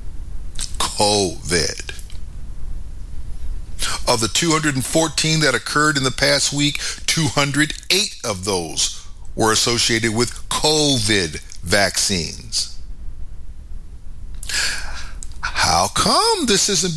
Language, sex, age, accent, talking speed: English, male, 50-69, American, 80 wpm